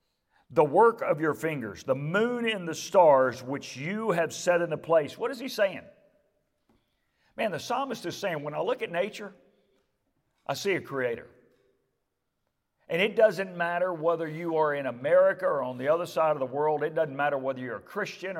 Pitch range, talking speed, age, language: 140-190 Hz, 190 wpm, 50-69, English